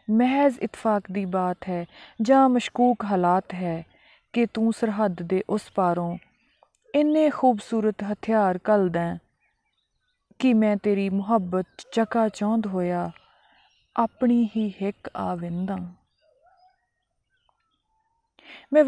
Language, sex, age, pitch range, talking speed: Punjabi, female, 20-39, 195-265 Hz, 100 wpm